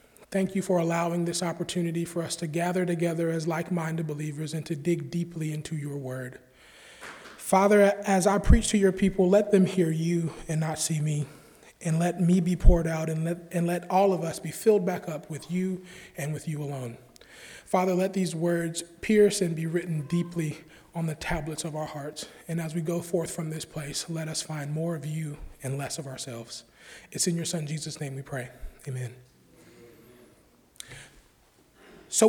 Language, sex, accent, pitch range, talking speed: English, male, American, 155-195 Hz, 190 wpm